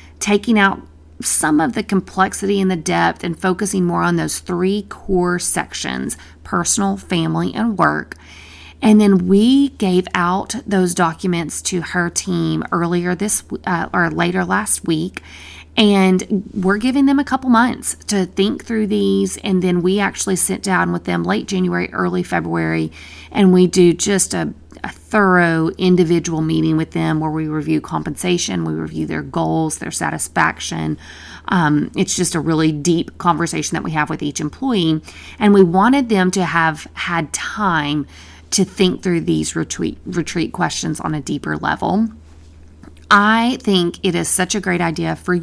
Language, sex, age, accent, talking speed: English, female, 30-49, American, 160 wpm